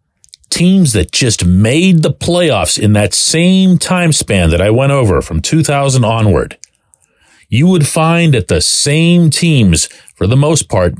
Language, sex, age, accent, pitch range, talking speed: English, male, 40-59, American, 100-145 Hz, 160 wpm